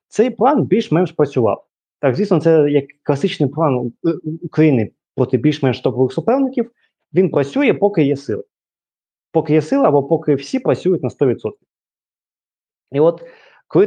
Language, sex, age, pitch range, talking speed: Ukrainian, male, 20-39, 120-160 Hz, 140 wpm